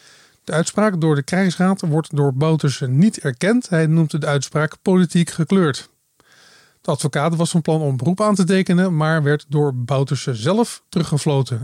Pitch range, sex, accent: 140-185 Hz, male, Dutch